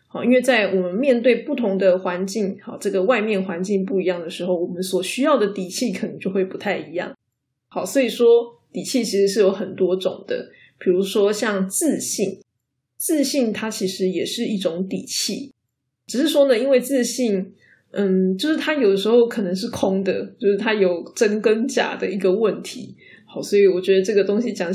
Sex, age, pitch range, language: female, 20-39, 190-240 Hz, Chinese